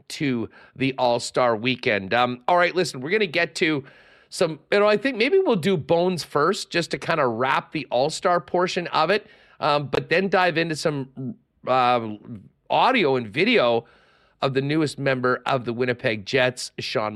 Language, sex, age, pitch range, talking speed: English, male, 40-59, 125-170 Hz, 180 wpm